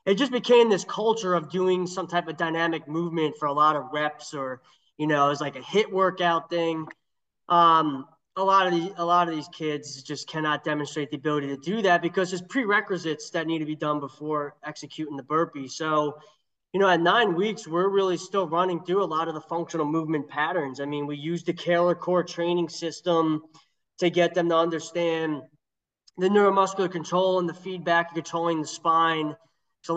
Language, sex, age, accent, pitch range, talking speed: English, male, 20-39, American, 150-175 Hz, 195 wpm